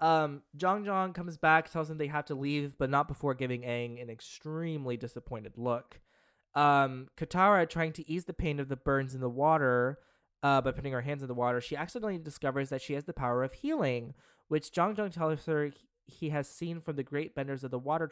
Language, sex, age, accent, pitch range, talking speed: English, male, 20-39, American, 125-150 Hz, 220 wpm